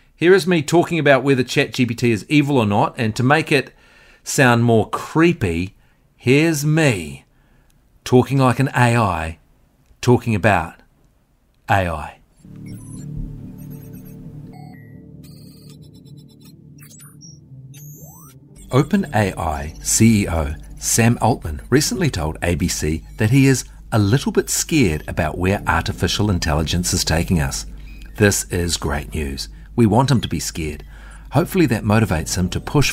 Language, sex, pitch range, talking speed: English, male, 85-135 Hz, 115 wpm